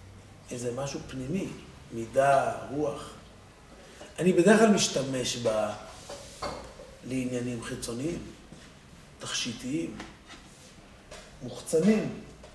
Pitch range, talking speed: 125-185 Hz, 60 wpm